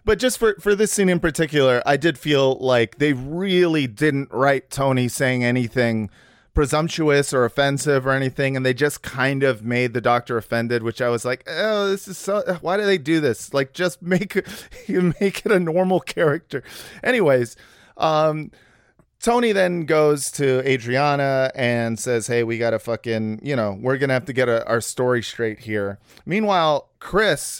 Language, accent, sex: English, American, male